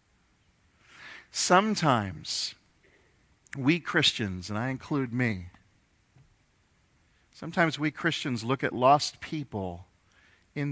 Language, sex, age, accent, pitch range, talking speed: English, male, 50-69, American, 95-135 Hz, 85 wpm